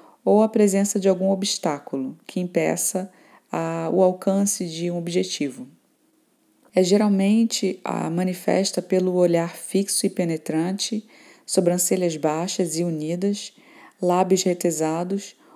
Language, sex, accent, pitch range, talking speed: Portuguese, female, Brazilian, 175-210 Hz, 110 wpm